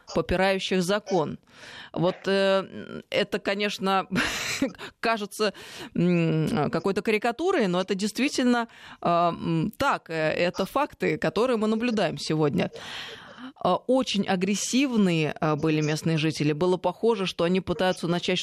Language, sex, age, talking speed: Russian, female, 20-39, 105 wpm